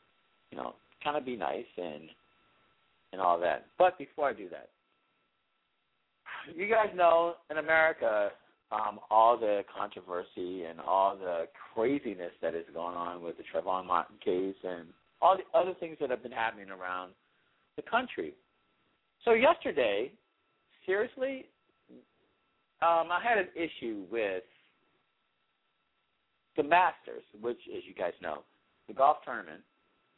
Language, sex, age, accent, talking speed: English, male, 50-69, American, 135 wpm